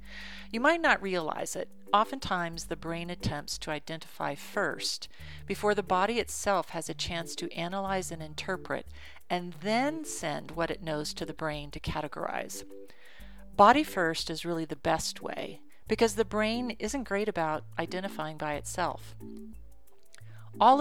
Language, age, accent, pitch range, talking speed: English, 40-59, American, 150-215 Hz, 145 wpm